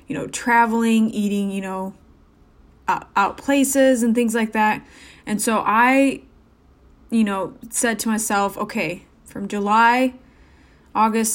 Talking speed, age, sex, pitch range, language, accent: 125 wpm, 20-39, female, 205-240 Hz, English, American